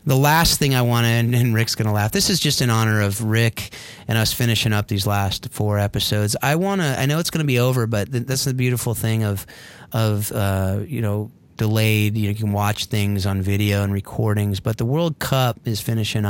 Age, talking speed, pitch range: 30-49, 225 wpm, 100-125 Hz